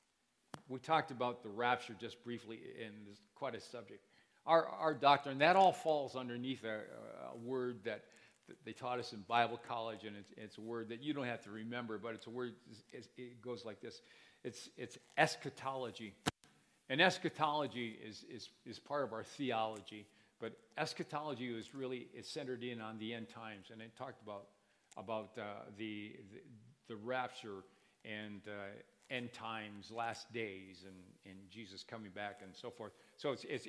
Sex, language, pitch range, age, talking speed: male, English, 110-135 Hz, 50-69, 175 wpm